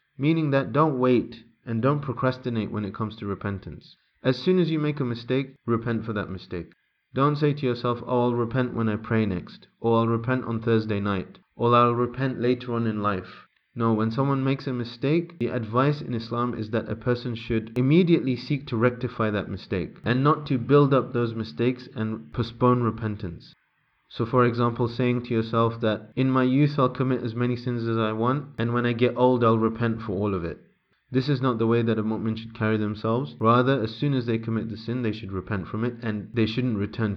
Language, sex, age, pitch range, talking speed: English, male, 30-49, 110-130 Hz, 220 wpm